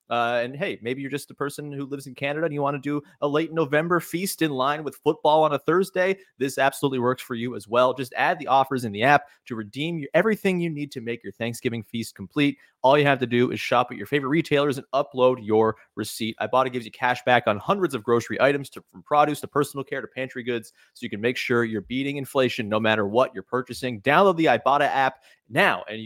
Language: English